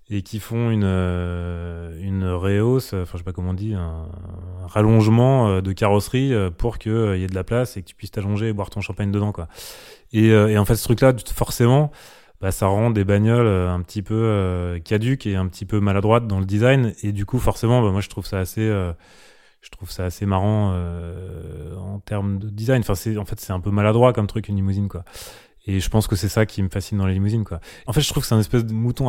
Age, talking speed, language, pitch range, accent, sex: 20-39, 240 wpm, French, 95-110 Hz, French, male